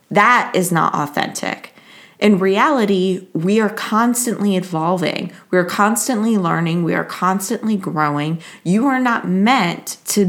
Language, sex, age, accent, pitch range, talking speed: English, female, 20-39, American, 185-225 Hz, 135 wpm